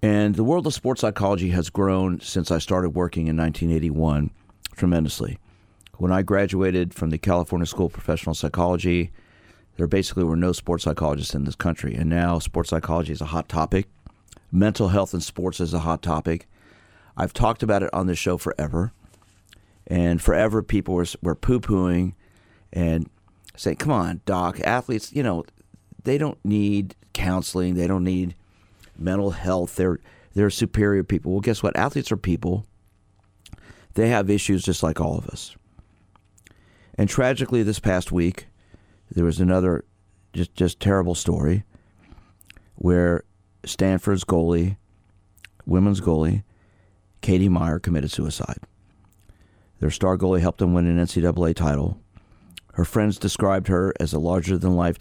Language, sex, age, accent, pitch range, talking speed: English, male, 40-59, American, 85-100 Hz, 150 wpm